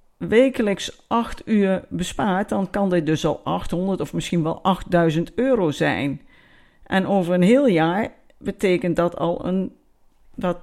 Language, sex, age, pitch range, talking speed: Dutch, female, 50-69, 165-225 Hz, 145 wpm